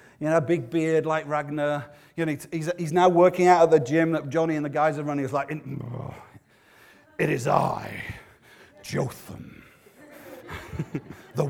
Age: 40-59